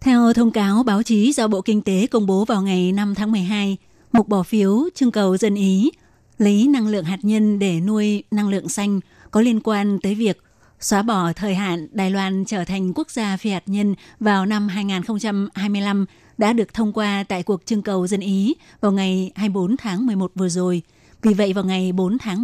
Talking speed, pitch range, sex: 205 wpm, 195-220 Hz, female